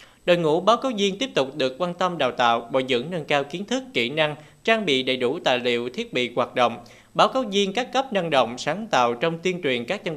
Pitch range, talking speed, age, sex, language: 130-195 Hz, 260 wpm, 20-39, male, Vietnamese